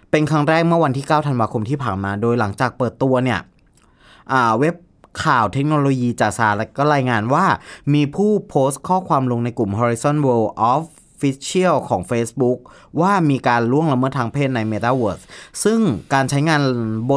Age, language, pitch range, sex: 20-39, Thai, 115-150 Hz, male